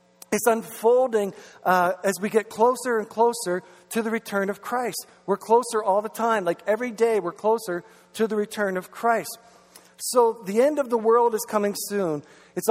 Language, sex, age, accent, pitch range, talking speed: English, male, 50-69, American, 195-240 Hz, 185 wpm